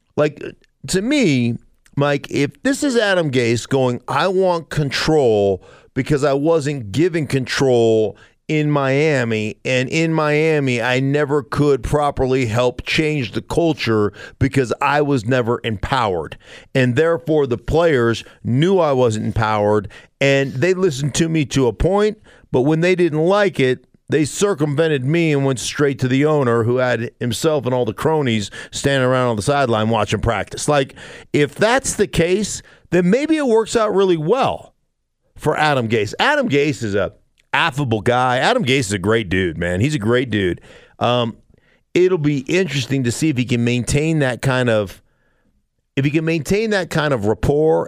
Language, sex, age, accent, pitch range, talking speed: English, male, 50-69, American, 120-155 Hz, 170 wpm